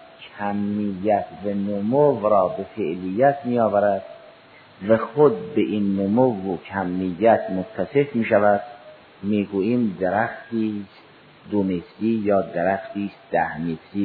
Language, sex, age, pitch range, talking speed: Persian, male, 50-69, 90-115 Hz, 90 wpm